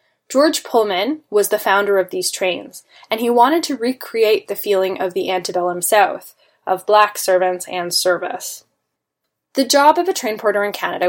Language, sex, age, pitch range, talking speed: English, female, 10-29, 185-235 Hz, 175 wpm